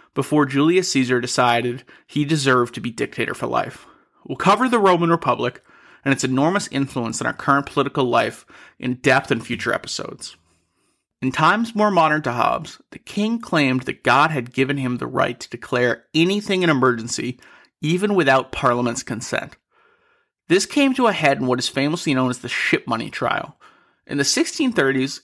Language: English